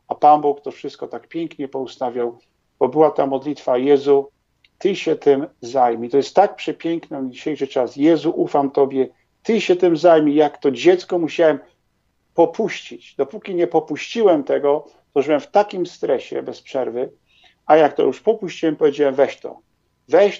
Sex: male